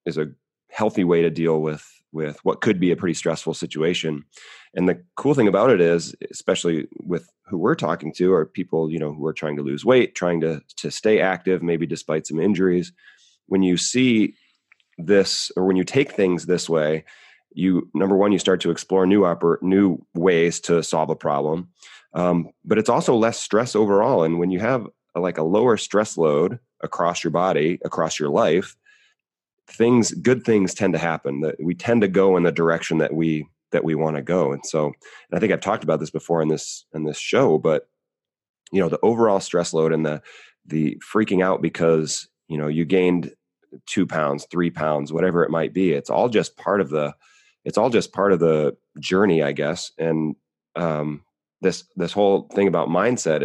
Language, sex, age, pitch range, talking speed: English, male, 30-49, 80-100 Hz, 200 wpm